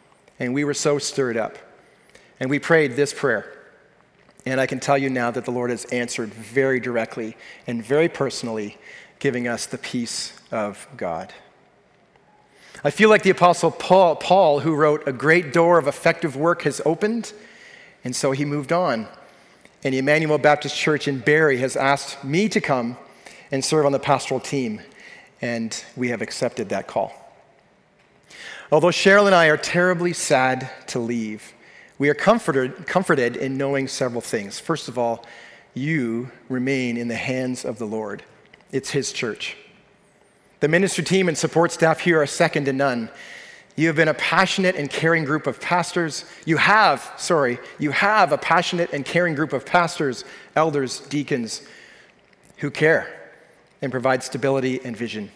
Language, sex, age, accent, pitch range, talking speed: English, male, 40-59, American, 130-170 Hz, 165 wpm